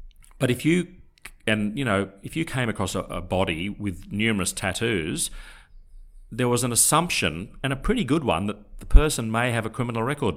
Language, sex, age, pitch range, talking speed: English, male, 40-59, 90-110 Hz, 190 wpm